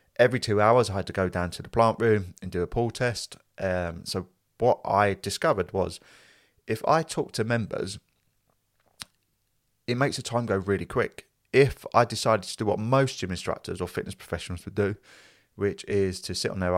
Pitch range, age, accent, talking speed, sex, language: 90-110 Hz, 30-49, British, 195 wpm, male, English